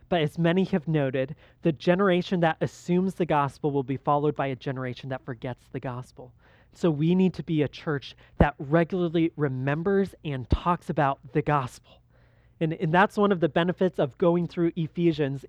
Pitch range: 145-185 Hz